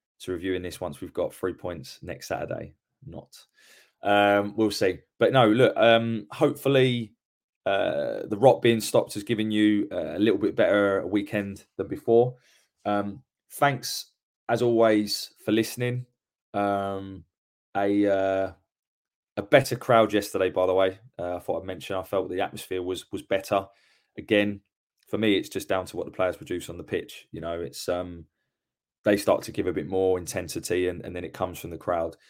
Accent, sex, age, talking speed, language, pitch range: British, male, 20-39, 180 wpm, English, 90-115 Hz